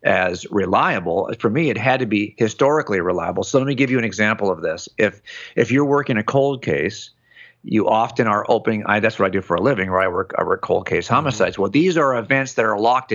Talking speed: 240 wpm